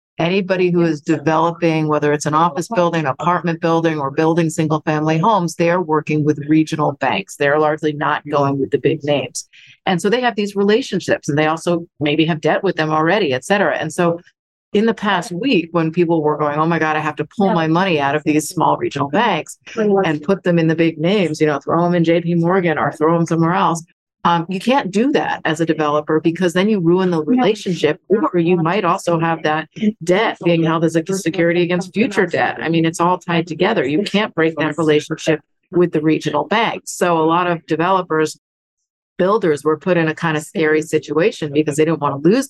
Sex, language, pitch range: female, English, 155-180 Hz